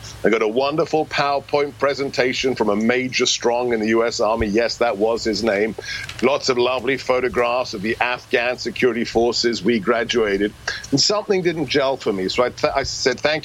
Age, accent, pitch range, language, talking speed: 50-69, British, 115-145 Hz, English, 185 wpm